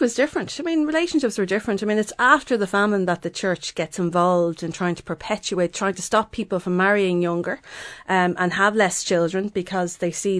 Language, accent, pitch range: English, Irish, 175-195 Hz